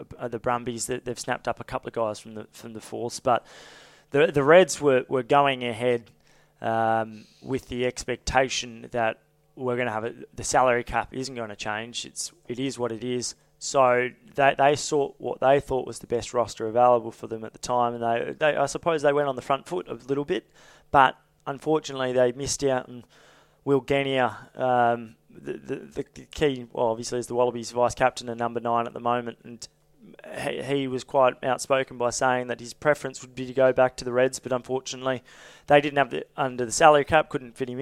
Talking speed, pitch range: 210 wpm, 115-135 Hz